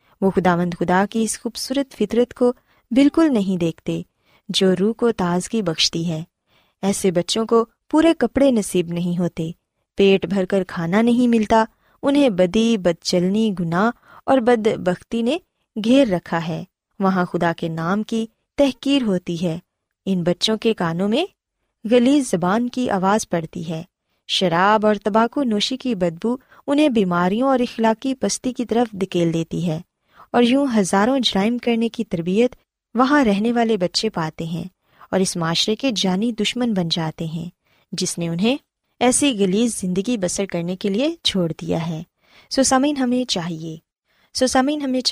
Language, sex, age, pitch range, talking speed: Urdu, female, 20-39, 180-250 Hz, 150 wpm